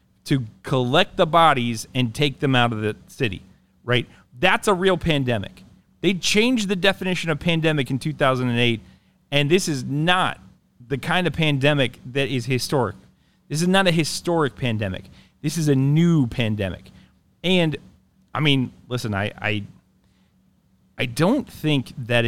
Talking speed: 150 wpm